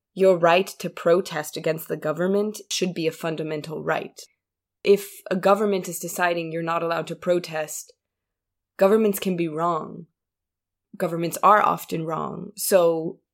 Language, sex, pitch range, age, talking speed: English, female, 165-195 Hz, 20-39, 140 wpm